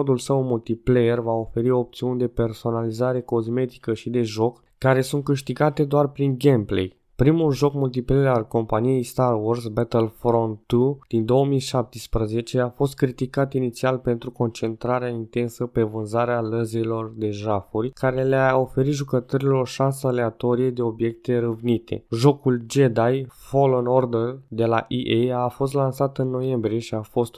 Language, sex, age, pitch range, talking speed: Romanian, male, 20-39, 115-135 Hz, 140 wpm